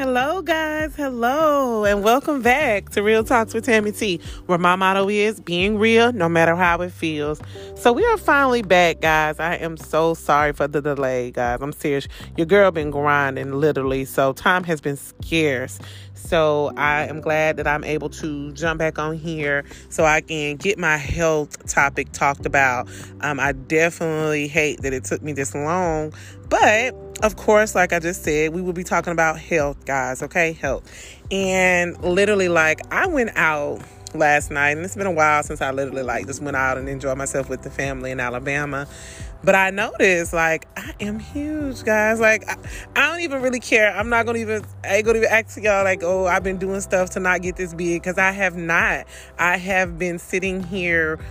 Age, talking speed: 30-49, 200 wpm